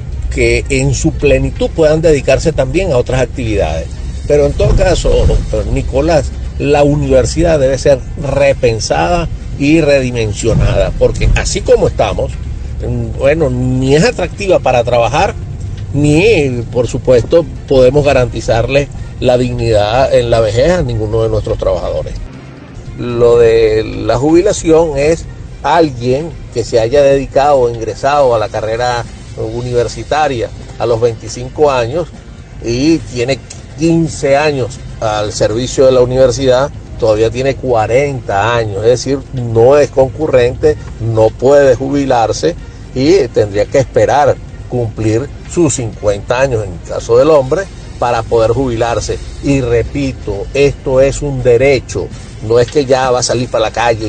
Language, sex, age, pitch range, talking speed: Spanish, male, 50-69, 115-140 Hz, 135 wpm